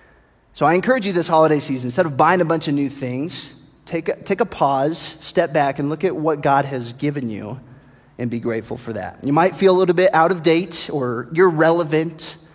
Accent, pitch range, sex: American, 135-185 Hz, male